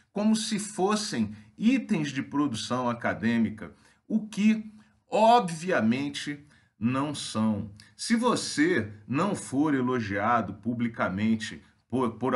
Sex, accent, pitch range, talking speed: male, Brazilian, 110-155 Hz, 90 wpm